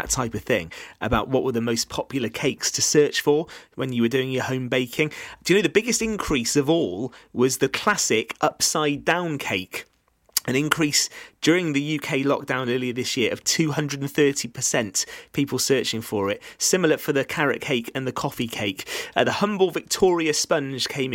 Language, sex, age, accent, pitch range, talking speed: English, male, 30-49, British, 105-145 Hz, 185 wpm